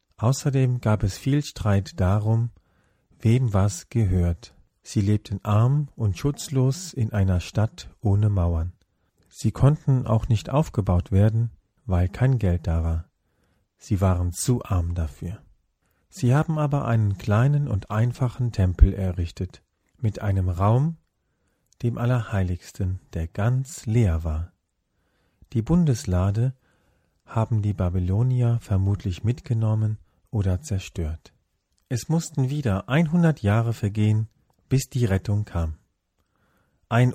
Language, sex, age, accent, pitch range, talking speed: German, male, 40-59, German, 95-130 Hz, 120 wpm